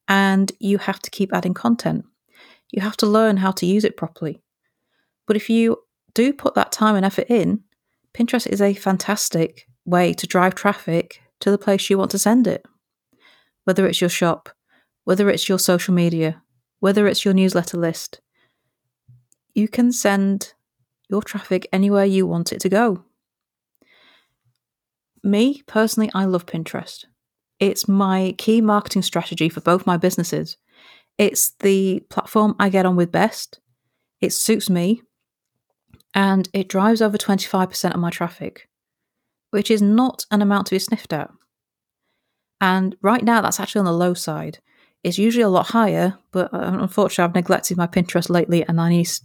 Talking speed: 160 wpm